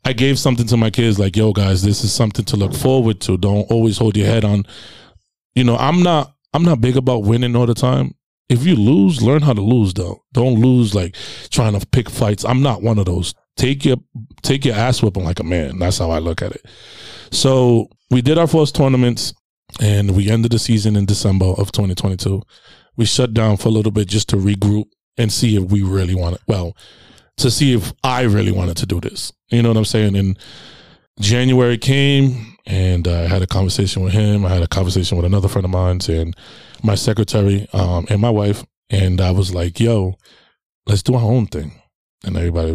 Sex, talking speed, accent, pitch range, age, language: male, 215 wpm, American, 95-125 Hz, 20-39, English